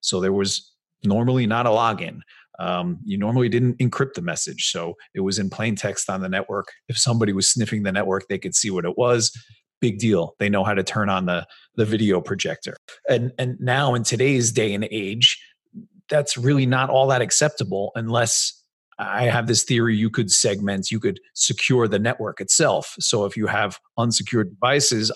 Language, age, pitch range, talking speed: English, 30-49, 100-125 Hz, 195 wpm